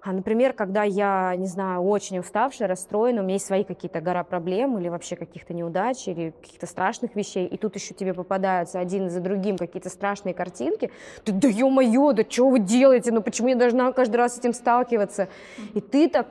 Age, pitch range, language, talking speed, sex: 20-39, 195-255 Hz, Russian, 200 wpm, female